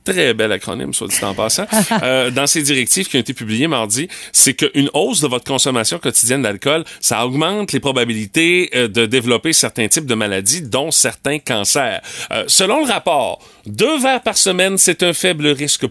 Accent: Canadian